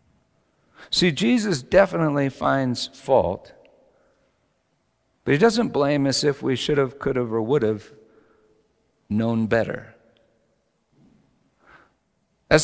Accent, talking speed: American, 105 wpm